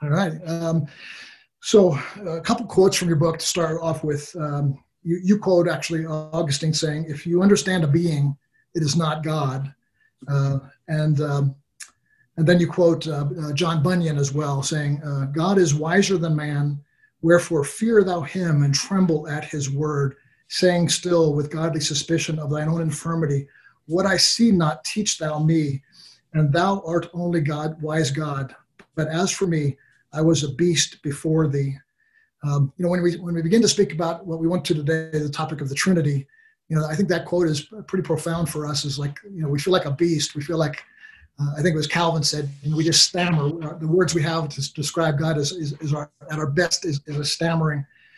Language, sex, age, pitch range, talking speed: English, male, 50-69, 150-175 Hz, 205 wpm